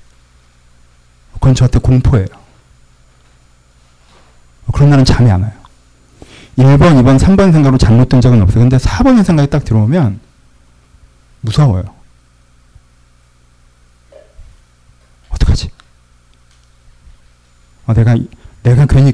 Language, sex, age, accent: Korean, male, 40-59, native